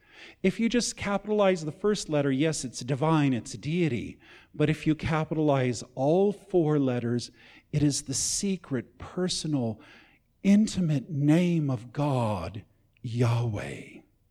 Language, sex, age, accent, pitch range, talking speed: English, male, 50-69, American, 125-160 Hz, 120 wpm